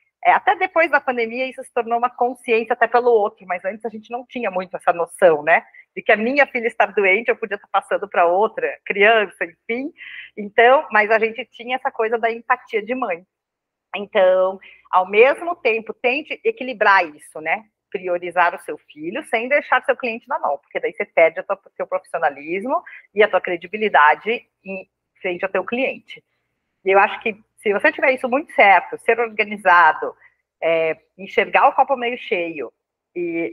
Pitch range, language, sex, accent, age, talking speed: 185-265 Hz, Portuguese, female, Brazilian, 40-59, 185 wpm